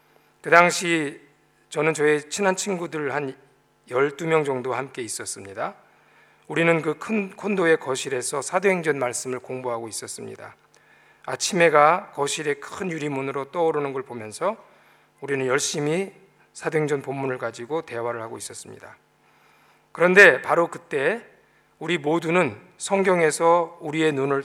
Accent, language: native, Korean